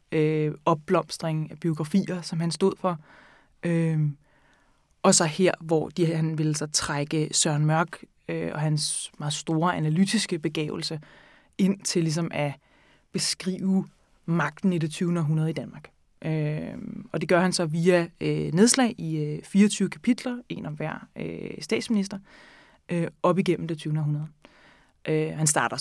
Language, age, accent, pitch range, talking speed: Danish, 20-39, native, 155-190 Hz, 130 wpm